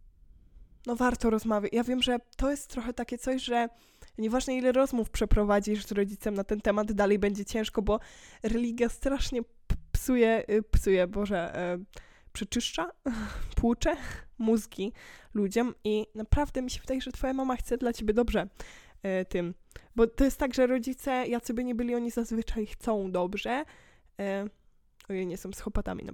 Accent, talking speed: native, 165 wpm